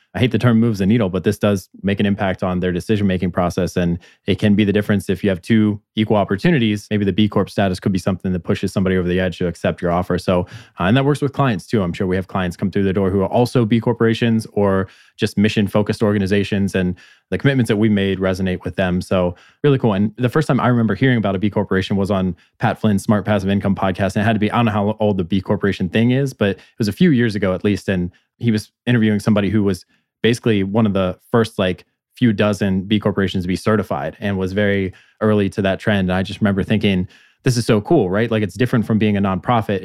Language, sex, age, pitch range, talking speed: English, male, 20-39, 95-115 Hz, 260 wpm